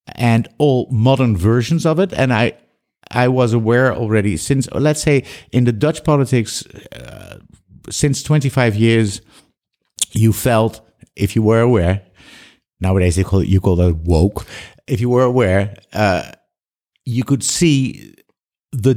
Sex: male